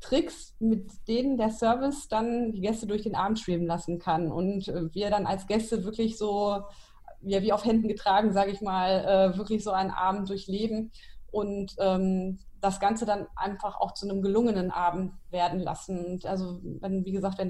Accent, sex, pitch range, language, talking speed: German, female, 185-215 Hz, German, 170 wpm